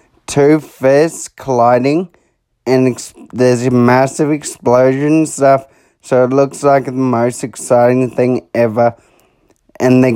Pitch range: 115-135 Hz